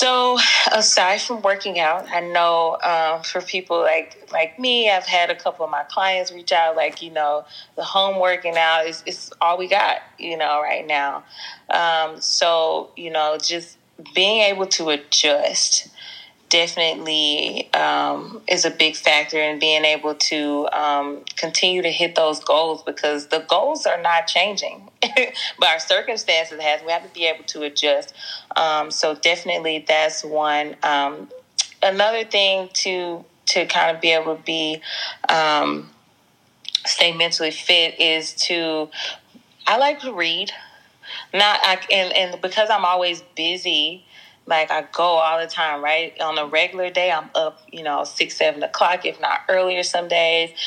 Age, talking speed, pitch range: 20-39, 160 wpm, 155-185 Hz